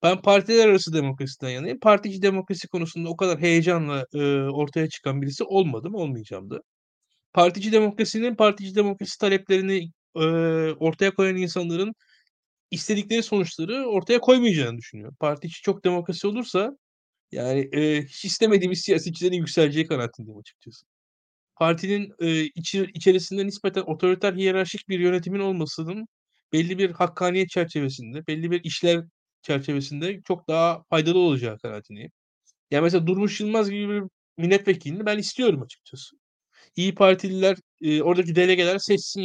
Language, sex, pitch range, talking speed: Turkish, male, 150-195 Hz, 125 wpm